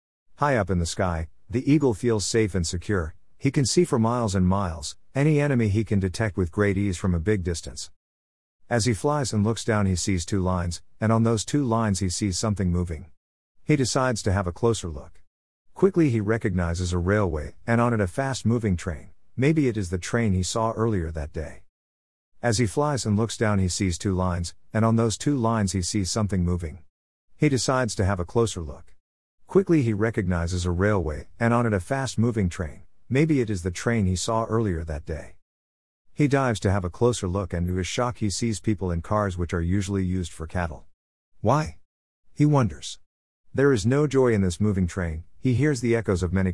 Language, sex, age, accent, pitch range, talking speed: English, male, 50-69, American, 85-115 Hz, 210 wpm